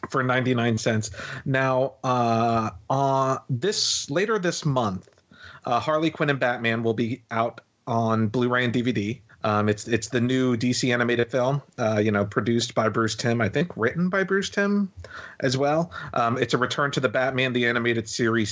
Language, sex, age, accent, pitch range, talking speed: English, male, 40-59, American, 110-130 Hz, 185 wpm